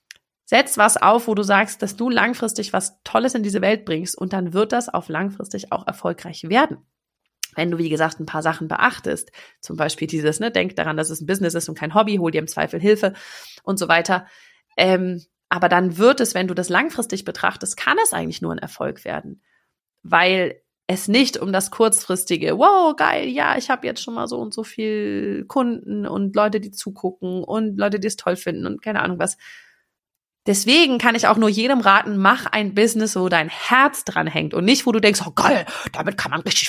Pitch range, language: 180-230 Hz, German